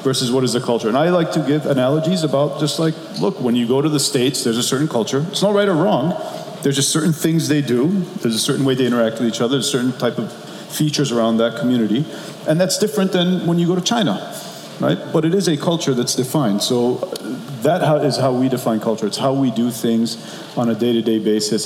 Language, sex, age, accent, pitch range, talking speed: English, male, 40-59, Canadian, 110-145 Hz, 240 wpm